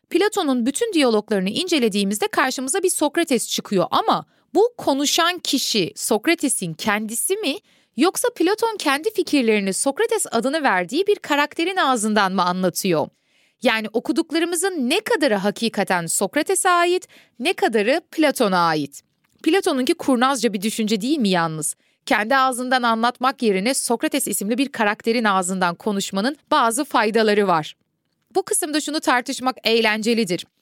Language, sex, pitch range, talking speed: Turkish, female, 210-310 Hz, 125 wpm